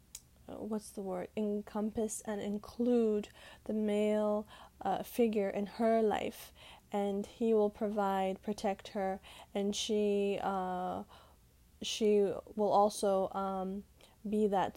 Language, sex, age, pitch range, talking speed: English, female, 10-29, 195-220 Hz, 115 wpm